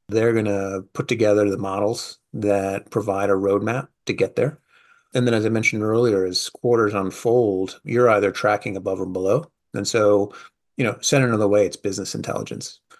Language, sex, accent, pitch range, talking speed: English, male, American, 100-125 Hz, 185 wpm